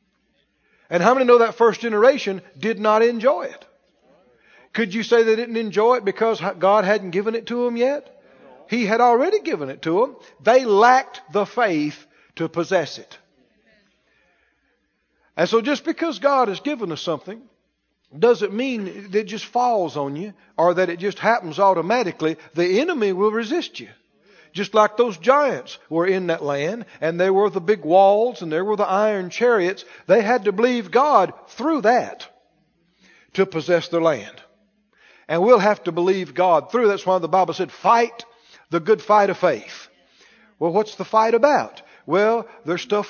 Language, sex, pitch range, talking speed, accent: English, male, 180-235 Hz, 175 wpm, American